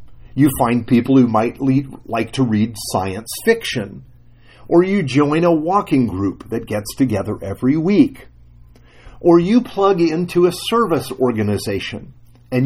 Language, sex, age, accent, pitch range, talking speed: English, male, 50-69, American, 100-150 Hz, 135 wpm